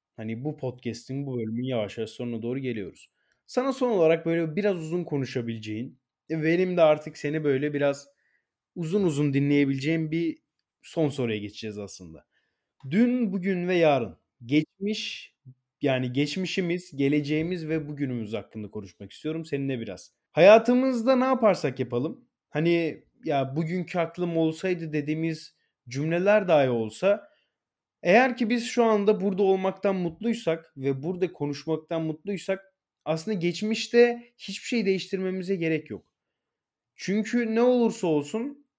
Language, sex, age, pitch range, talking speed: Turkish, male, 30-49, 140-195 Hz, 125 wpm